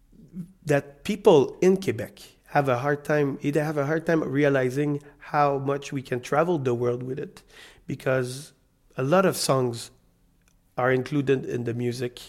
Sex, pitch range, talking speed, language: male, 125-145 Hz, 160 wpm, English